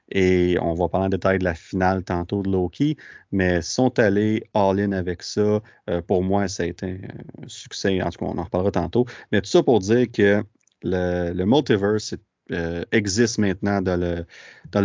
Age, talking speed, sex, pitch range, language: 30-49, 185 wpm, male, 95-110 Hz, French